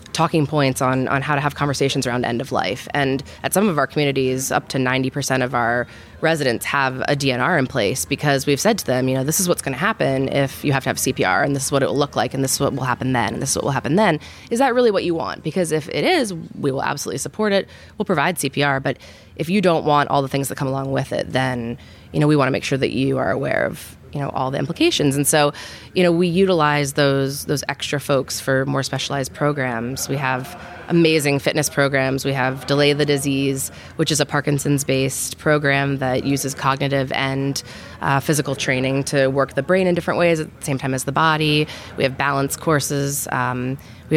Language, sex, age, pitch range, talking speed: English, female, 20-39, 135-155 Hz, 240 wpm